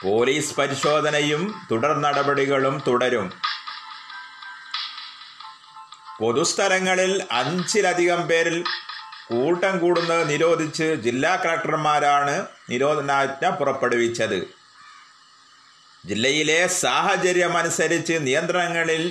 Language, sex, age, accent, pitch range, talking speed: Malayalam, male, 30-49, native, 140-180 Hz, 60 wpm